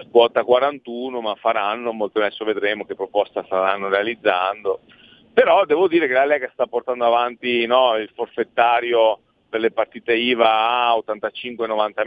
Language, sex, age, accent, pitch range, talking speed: Italian, male, 40-59, native, 110-180 Hz, 145 wpm